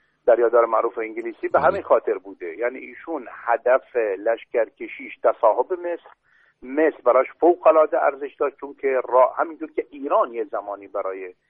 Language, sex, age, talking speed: Persian, male, 50-69, 140 wpm